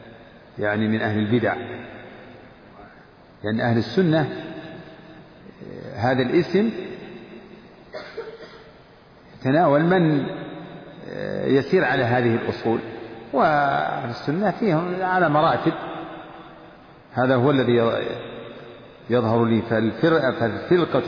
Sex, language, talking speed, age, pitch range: male, Arabic, 75 wpm, 50-69, 120-185 Hz